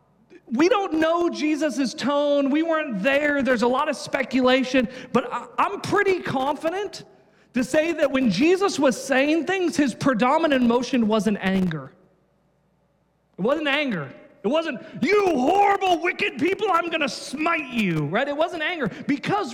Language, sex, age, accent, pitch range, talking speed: English, male, 40-59, American, 170-270 Hz, 155 wpm